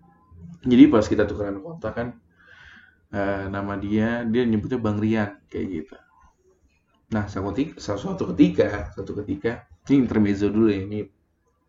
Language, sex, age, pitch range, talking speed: Indonesian, male, 20-39, 100-130 Hz, 135 wpm